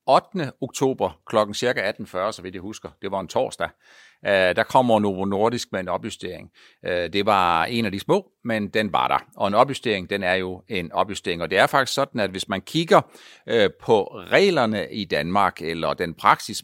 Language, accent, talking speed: Danish, native, 195 wpm